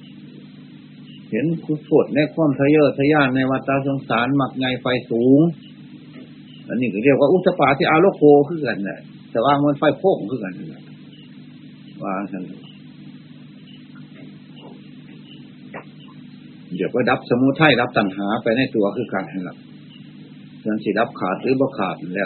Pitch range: 125-155 Hz